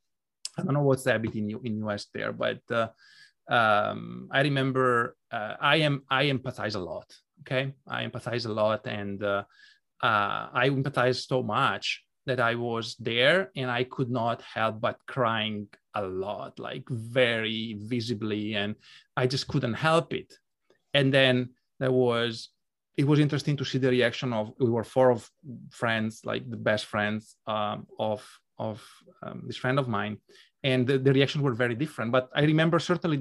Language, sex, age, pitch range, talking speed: English, male, 30-49, 115-140 Hz, 170 wpm